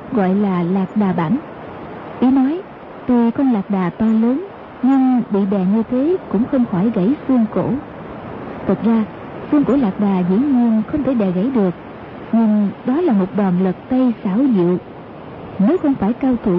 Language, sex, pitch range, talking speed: Vietnamese, female, 200-255 Hz, 185 wpm